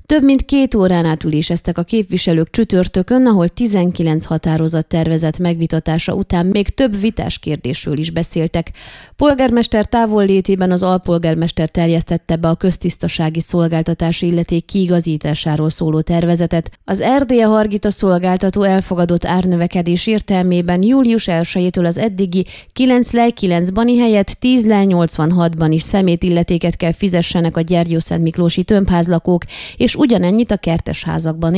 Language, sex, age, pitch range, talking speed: Hungarian, female, 20-39, 165-215 Hz, 120 wpm